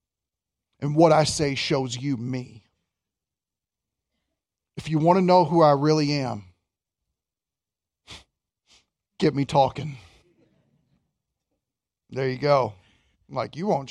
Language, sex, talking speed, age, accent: English, male, 110 wpm, 40-59, American